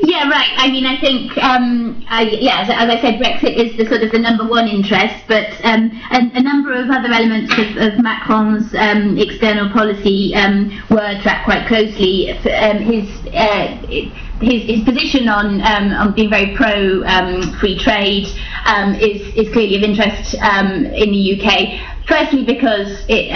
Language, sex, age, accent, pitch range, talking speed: English, female, 20-39, British, 195-235 Hz, 175 wpm